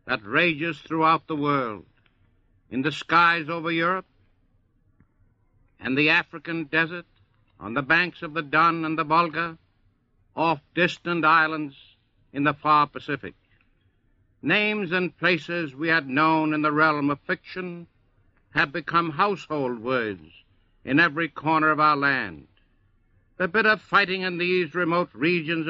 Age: 60-79